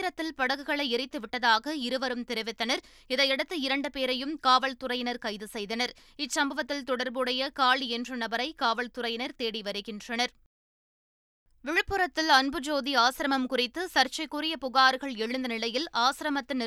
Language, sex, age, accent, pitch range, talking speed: Tamil, female, 20-39, native, 235-285 Hz, 100 wpm